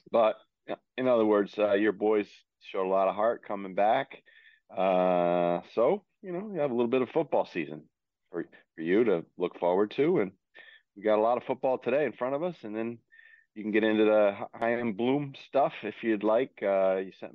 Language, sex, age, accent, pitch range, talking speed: English, male, 40-59, American, 90-115 Hz, 215 wpm